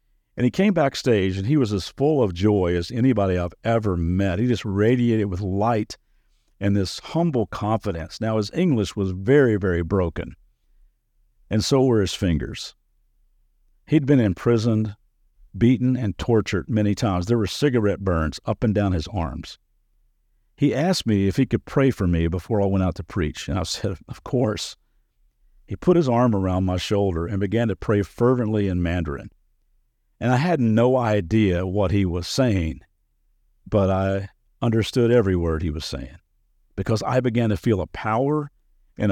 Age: 50-69